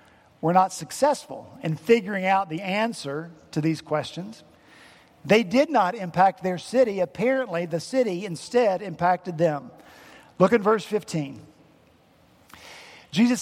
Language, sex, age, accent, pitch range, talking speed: English, male, 50-69, American, 185-260 Hz, 125 wpm